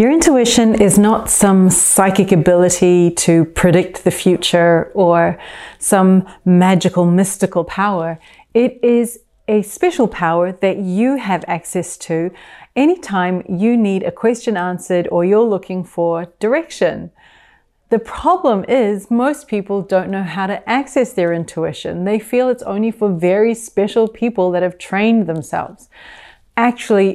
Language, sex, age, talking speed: English, female, 30-49, 135 wpm